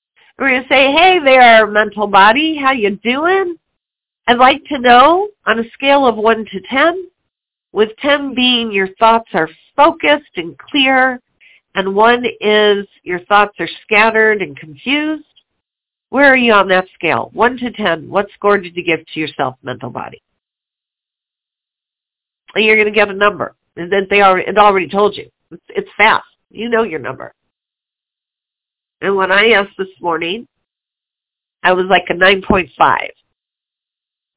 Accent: American